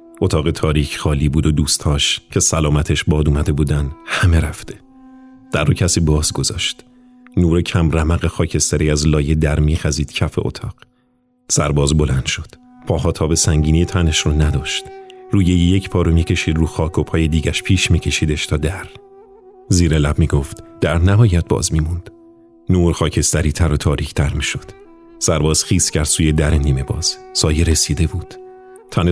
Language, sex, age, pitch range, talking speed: Persian, male, 40-59, 75-110 Hz, 160 wpm